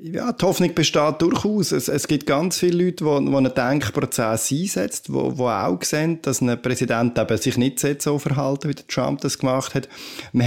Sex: male